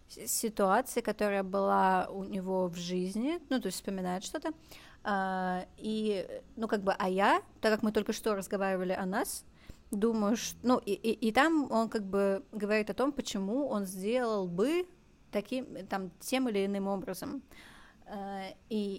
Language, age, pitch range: Russian, 20-39, 195-230 Hz